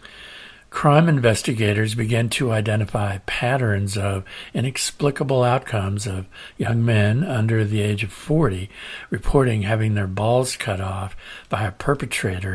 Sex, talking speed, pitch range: male, 125 wpm, 100-125 Hz